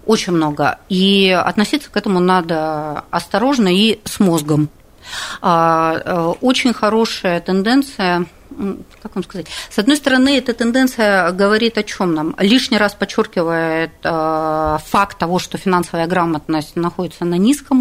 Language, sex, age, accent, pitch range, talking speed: Russian, female, 40-59, native, 165-220 Hz, 125 wpm